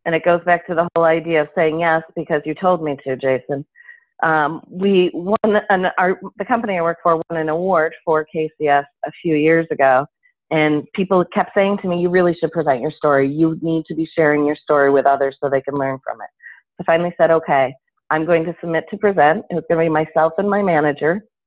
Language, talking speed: English, 230 wpm